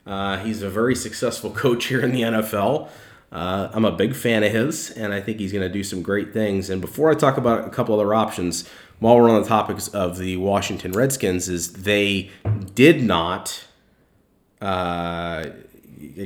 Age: 30-49